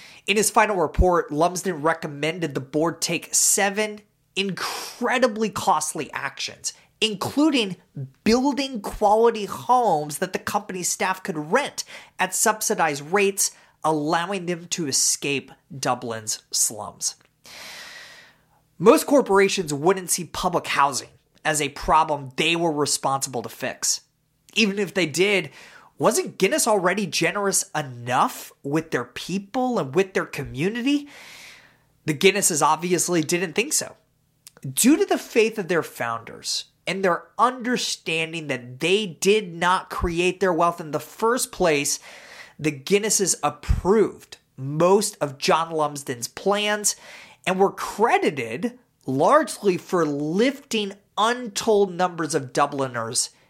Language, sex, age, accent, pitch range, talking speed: English, male, 30-49, American, 150-205 Hz, 120 wpm